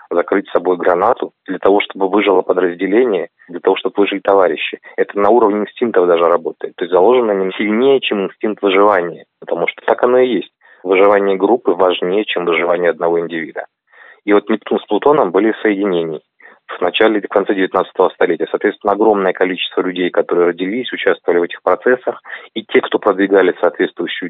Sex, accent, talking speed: male, native, 175 wpm